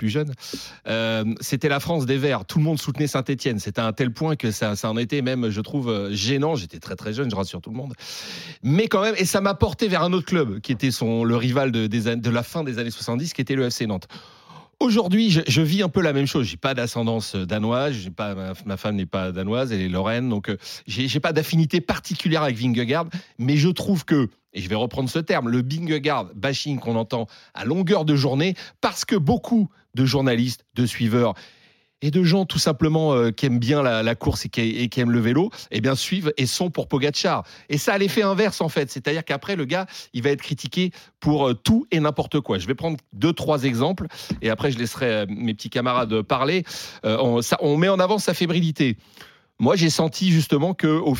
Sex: male